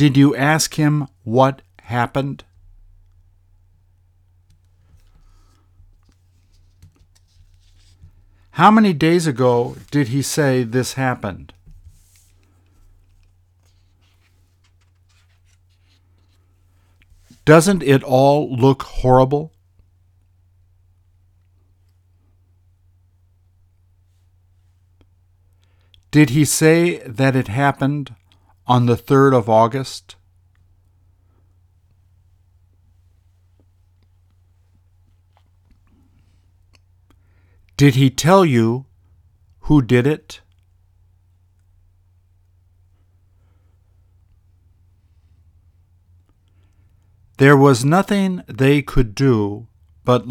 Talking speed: 55 wpm